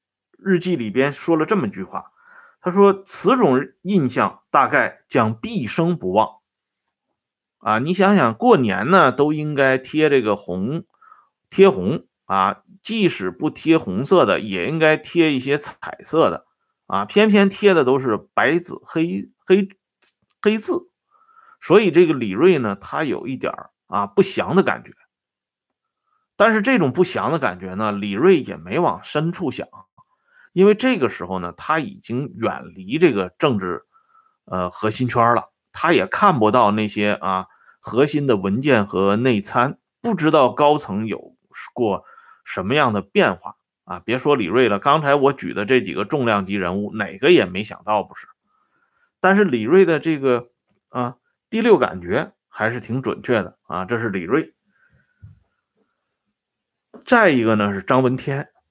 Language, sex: Swedish, male